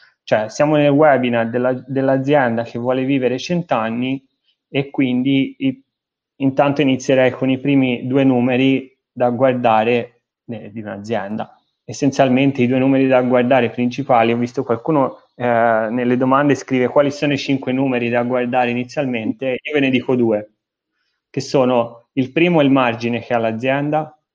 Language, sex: Italian, male